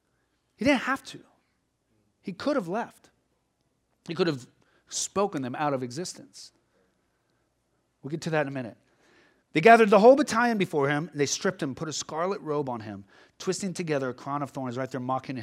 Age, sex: 30-49, male